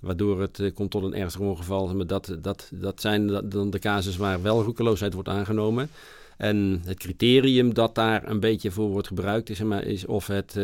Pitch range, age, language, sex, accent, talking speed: 95-110 Hz, 50-69, English, male, Dutch, 210 wpm